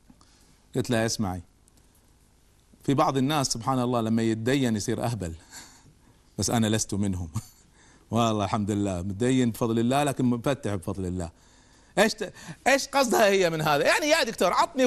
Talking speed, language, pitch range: 150 wpm, Arabic, 100-150 Hz